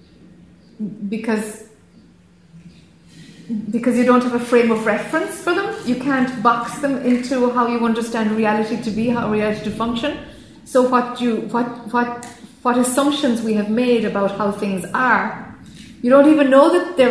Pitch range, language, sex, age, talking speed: 200-240 Hz, English, female, 30-49, 160 wpm